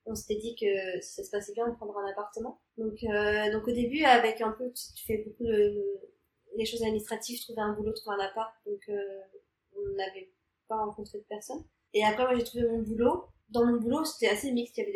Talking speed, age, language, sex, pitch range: 235 wpm, 20-39, English, female, 210-235 Hz